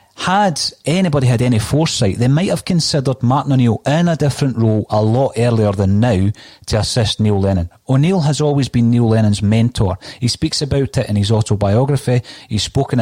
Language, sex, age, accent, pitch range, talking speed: English, male, 30-49, British, 105-135 Hz, 185 wpm